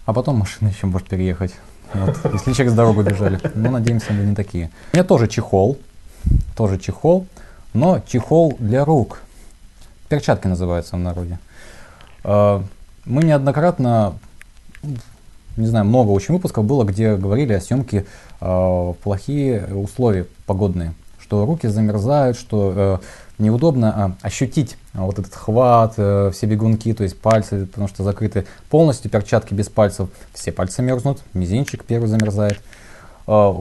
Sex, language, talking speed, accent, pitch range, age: male, Russian, 125 wpm, native, 95-120 Hz, 20-39